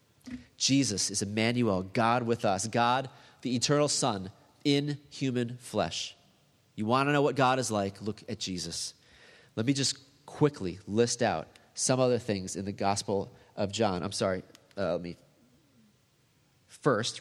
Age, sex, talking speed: 30-49, male, 155 wpm